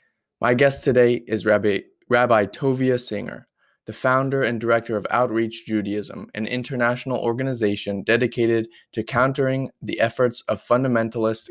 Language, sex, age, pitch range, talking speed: English, male, 20-39, 110-125 Hz, 130 wpm